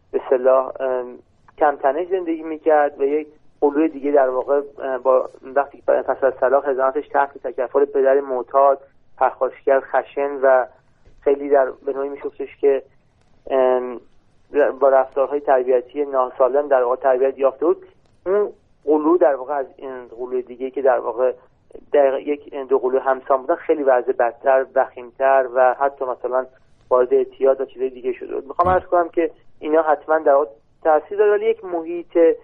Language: Persian